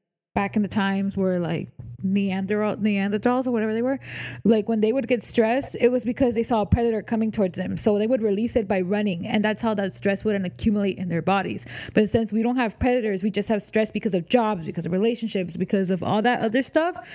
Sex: female